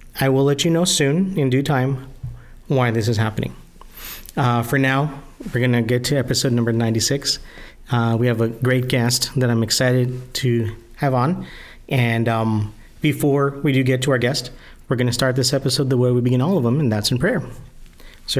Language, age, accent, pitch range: English, 40-59, American, 115-130 Hz